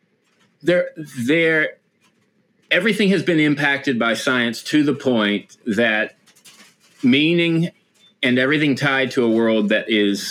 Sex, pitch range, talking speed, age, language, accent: male, 115-140 Hz, 120 wpm, 40-59, English, American